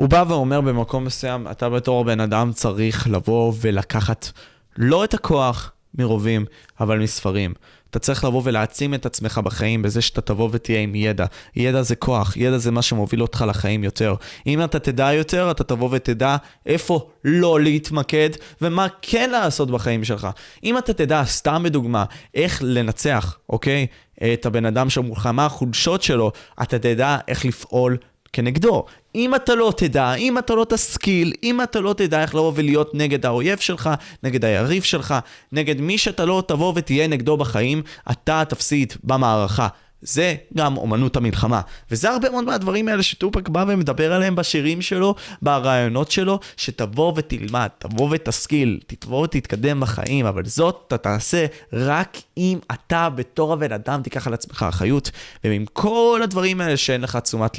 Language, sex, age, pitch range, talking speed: Hebrew, male, 20-39, 110-155 Hz, 160 wpm